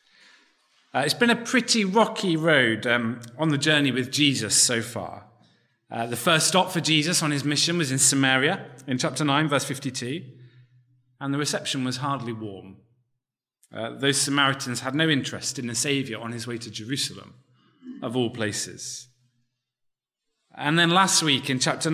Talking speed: 165 wpm